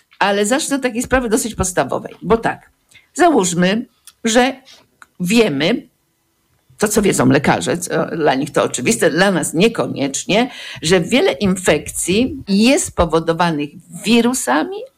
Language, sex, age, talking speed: Polish, female, 50-69, 120 wpm